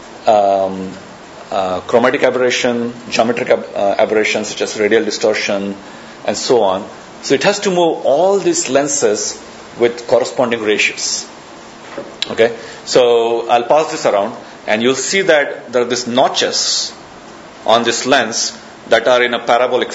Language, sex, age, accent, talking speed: English, male, 40-59, Indian, 145 wpm